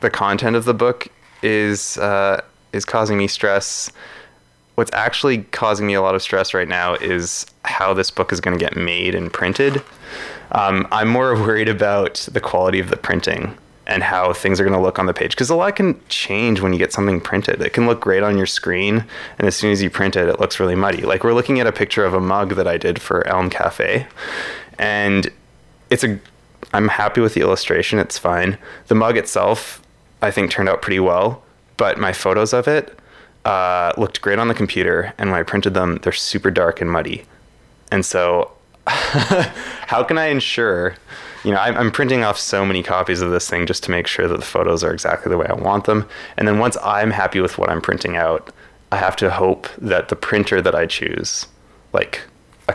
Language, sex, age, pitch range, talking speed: English, male, 20-39, 95-110 Hz, 215 wpm